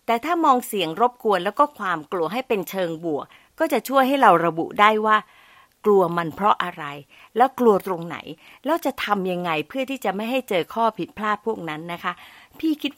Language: Thai